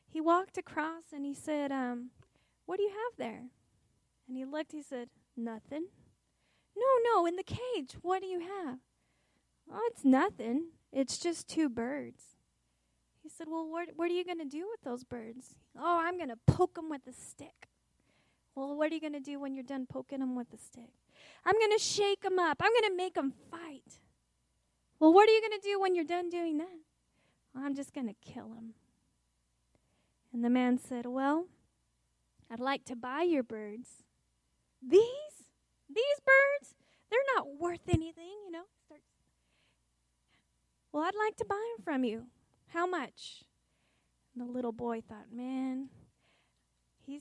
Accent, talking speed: American, 175 wpm